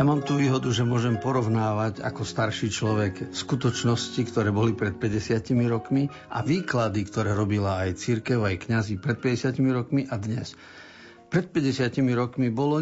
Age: 50-69